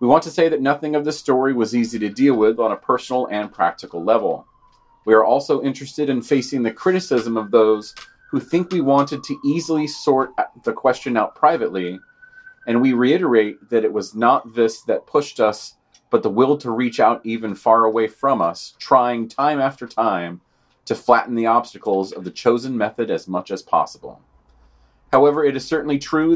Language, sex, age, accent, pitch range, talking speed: English, male, 30-49, American, 110-140 Hz, 190 wpm